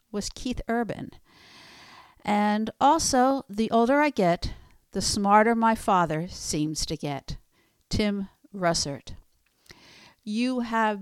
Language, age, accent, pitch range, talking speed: English, 60-79, American, 190-235 Hz, 110 wpm